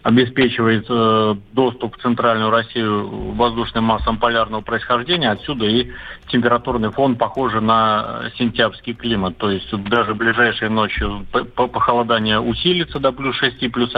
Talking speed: 125 wpm